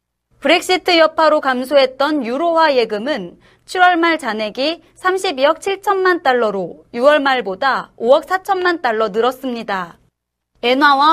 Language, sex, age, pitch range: Korean, female, 30-49, 245-330 Hz